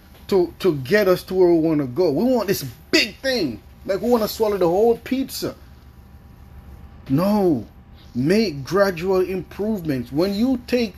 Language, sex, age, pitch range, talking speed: English, male, 30-49, 145-235 Hz, 165 wpm